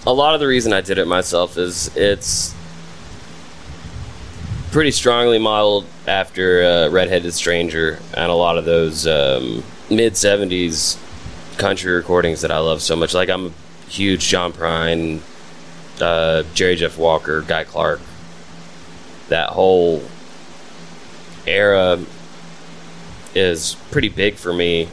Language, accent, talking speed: English, American, 125 wpm